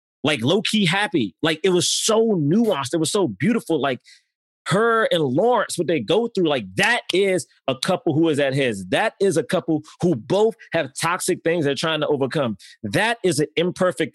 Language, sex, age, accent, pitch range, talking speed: English, male, 30-49, American, 165-230 Hz, 195 wpm